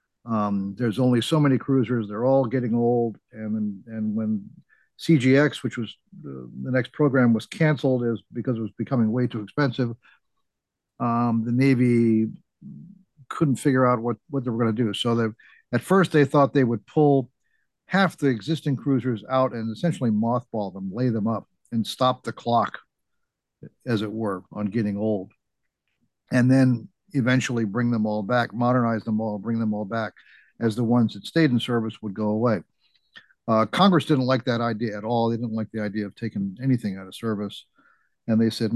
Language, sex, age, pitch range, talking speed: English, male, 50-69, 110-135 Hz, 185 wpm